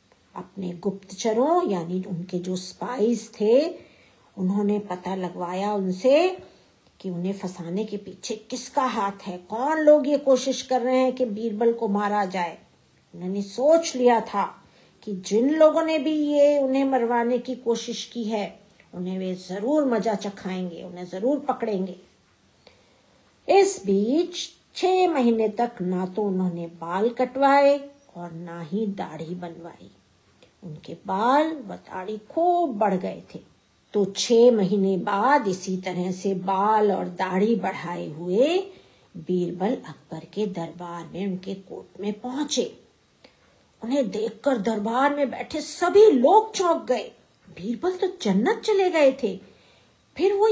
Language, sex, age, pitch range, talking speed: Hindi, female, 50-69, 185-270 Hz, 135 wpm